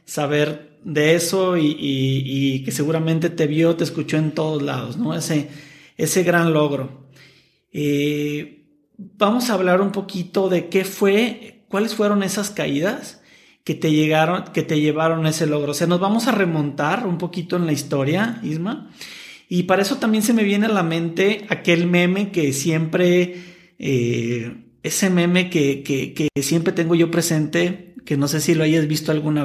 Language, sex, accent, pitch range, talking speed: Spanish, male, Mexican, 155-200 Hz, 170 wpm